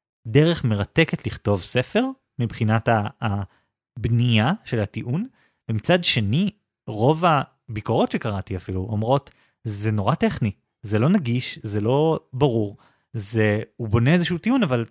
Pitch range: 105-140 Hz